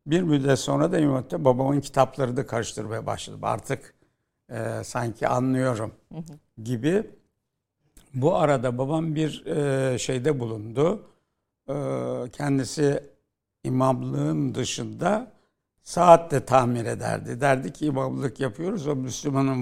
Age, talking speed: 60-79, 105 wpm